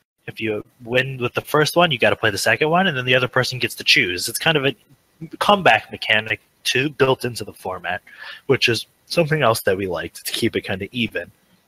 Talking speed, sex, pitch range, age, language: 235 wpm, male, 105-140 Hz, 20-39, English